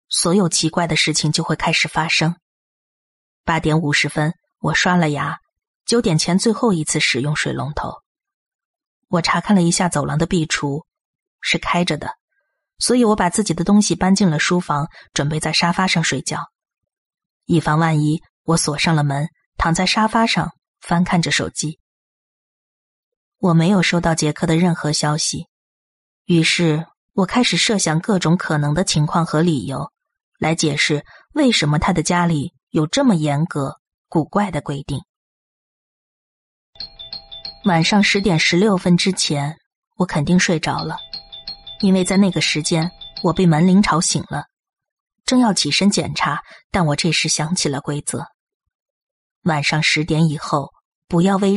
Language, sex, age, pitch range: Chinese, female, 20-39, 155-195 Hz